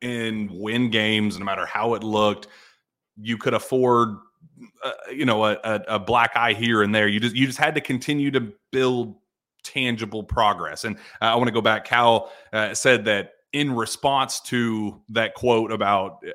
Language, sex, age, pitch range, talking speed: English, male, 30-49, 105-120 Hz, 185 wpm